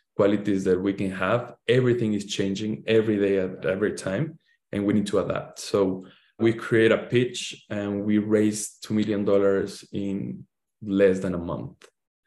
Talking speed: 160 wpm